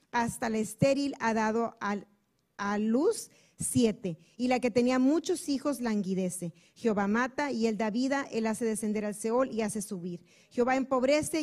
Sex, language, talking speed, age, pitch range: female, Spanish, 170 wpm, 40-59, 210-255 Hz